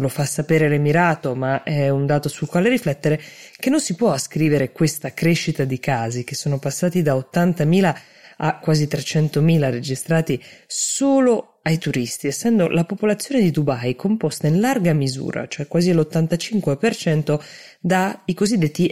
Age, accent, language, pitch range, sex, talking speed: 20-39, native, Italian, 140-175 Hz, female, 150 wpm